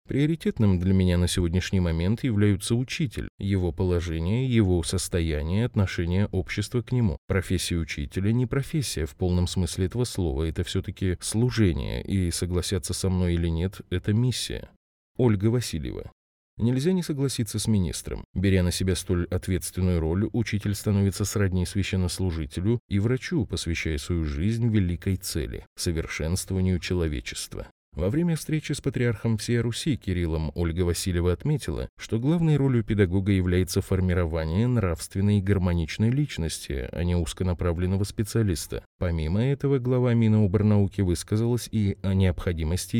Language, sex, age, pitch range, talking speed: Russian, male, 20-39, 90-115 Hz, 135 wpm